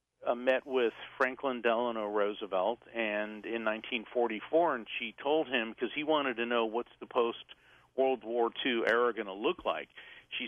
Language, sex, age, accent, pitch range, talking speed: English, male, 50-69, American, 105-125 Hz, 170 wpm